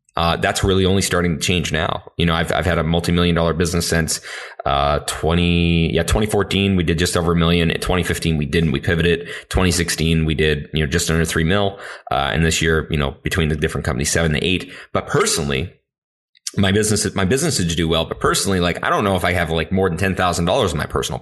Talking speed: 230 wpm